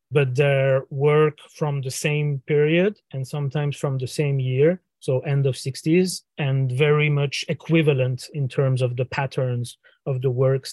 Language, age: English, 30-49